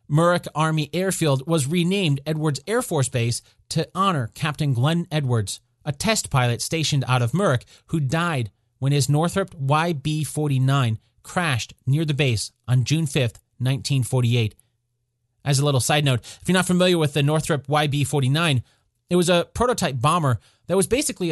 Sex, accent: male, American